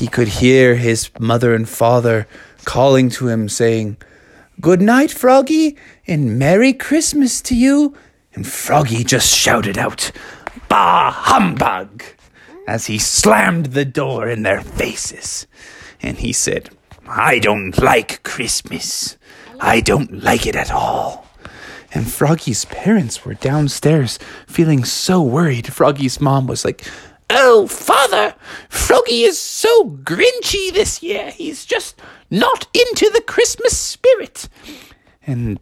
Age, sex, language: 30-49, male, English